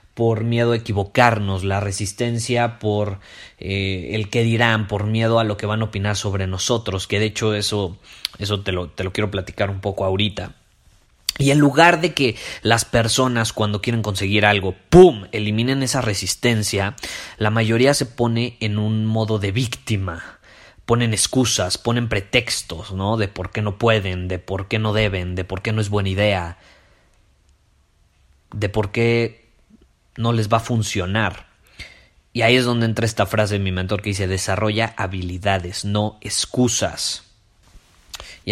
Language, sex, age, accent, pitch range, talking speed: Spanish, male, 30-49, Mexican, 95-115 Hz, 165 wpm